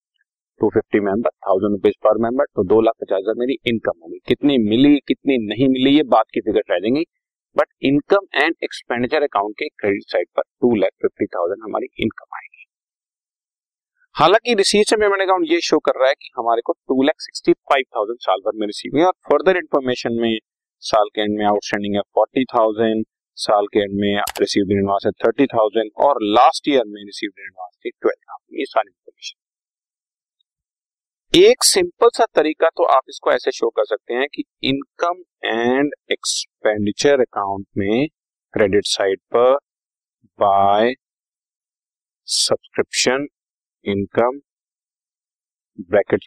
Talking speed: 100 wpm